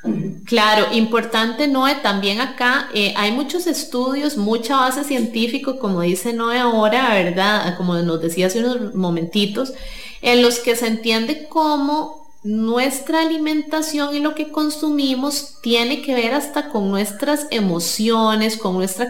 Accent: Colombian